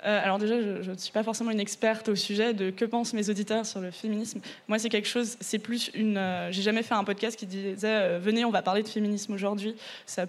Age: 20-39